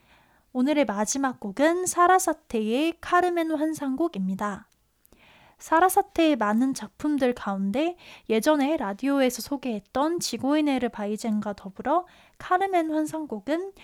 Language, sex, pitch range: Korean, female, 220-320 Hz